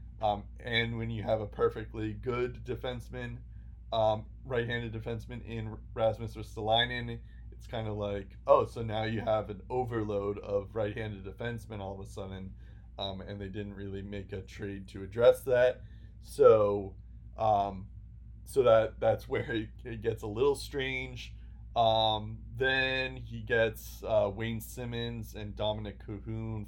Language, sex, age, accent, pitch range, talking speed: English, male, 20-39, American, 100-125 Hz, 145 wpm